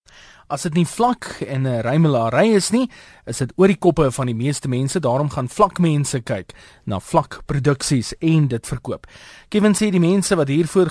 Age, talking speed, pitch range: 30-49, 180 wpm, 125-175 Hz